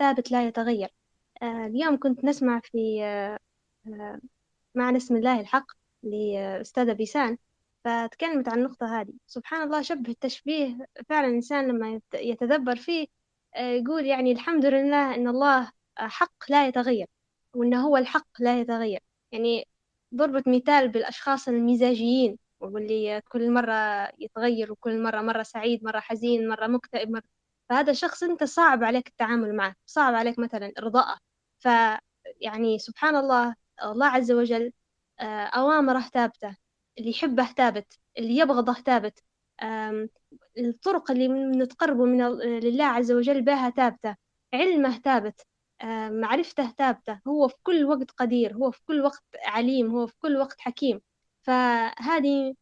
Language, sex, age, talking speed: Arabic, female, 10-29, 130 wpm